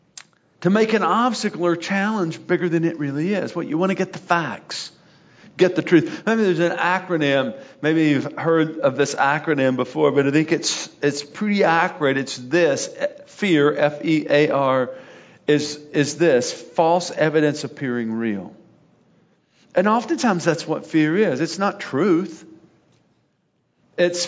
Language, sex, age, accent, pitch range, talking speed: English, male, 50-69, American, 150-185 Hz, 165 wpm